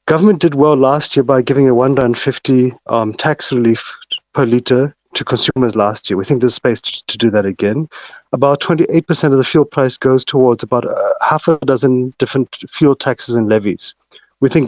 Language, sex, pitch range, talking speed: English, male, 120-145 Hz, 190 wpm